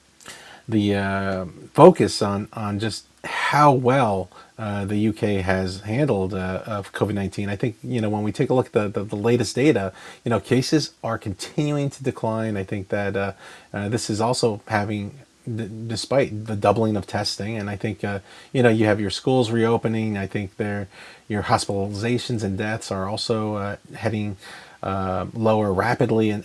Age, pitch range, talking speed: 30-49, 100-120 Hz, 185 wpm